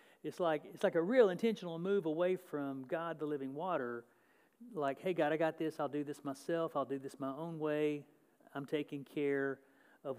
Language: English